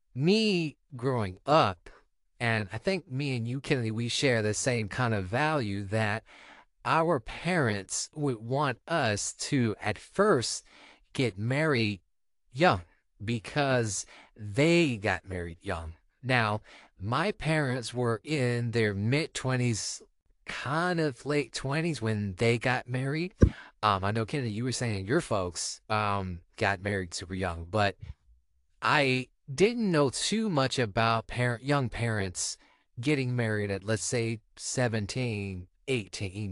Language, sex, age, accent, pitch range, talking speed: English, male, 30-49, American, 100-135 Hz, 130 wpm